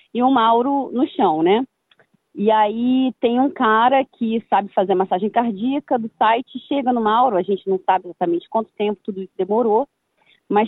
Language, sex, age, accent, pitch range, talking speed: Portuguese, female, 20-39, Brazilian, 195-245 Hz, 180 wpm